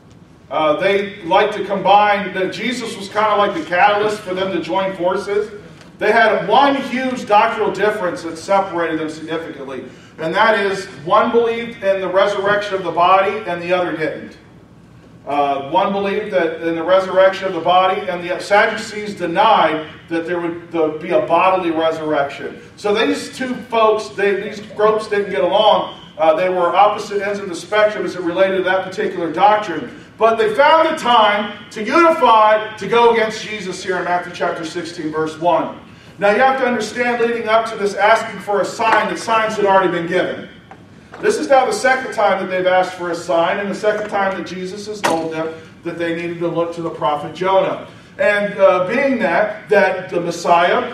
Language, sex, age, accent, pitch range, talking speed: English, male, 40-59, American, 170-210 Hz, 190 wpm